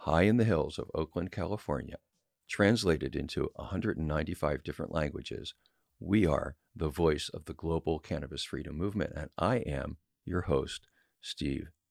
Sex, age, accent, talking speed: male, 50-69, American, 140 wpm